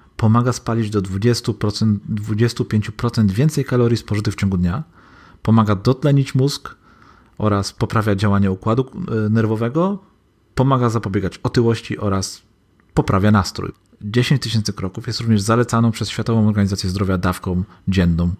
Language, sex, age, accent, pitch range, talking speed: Polish, male, 40-59, native, 95-115 Hz, 115 wpm